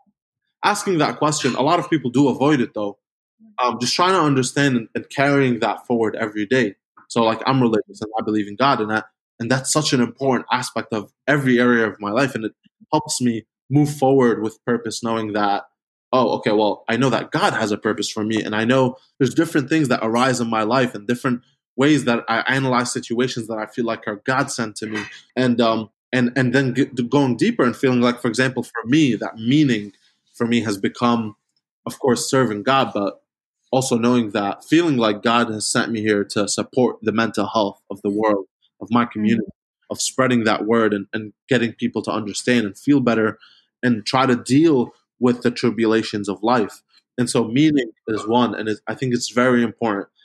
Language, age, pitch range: English, 20-39, 110-130 Hz